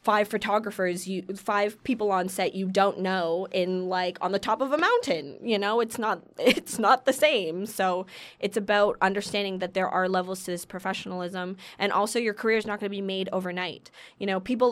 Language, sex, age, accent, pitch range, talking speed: English, female, 20-39, American, 185-220 Hz, 210 wpm